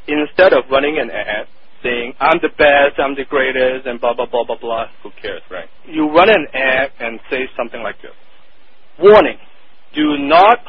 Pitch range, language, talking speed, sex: 125-155 Hz, English, 185 wpm, male